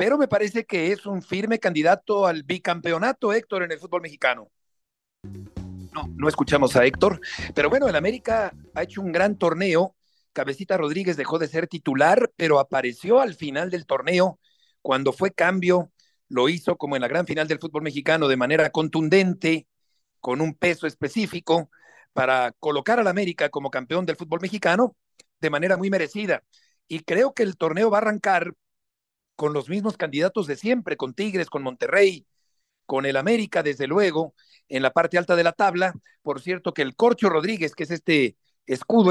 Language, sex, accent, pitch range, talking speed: Spanish, male, Mexican, 155-195 Hz, 175 wpm